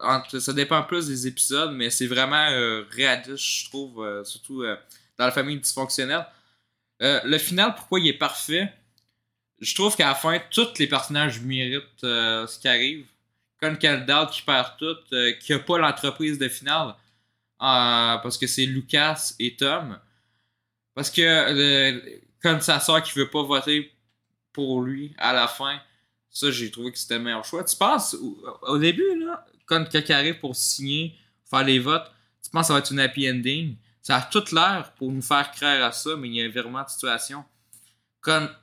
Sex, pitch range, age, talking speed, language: male, 115-145 Hz, 20-39, 190 wpm, French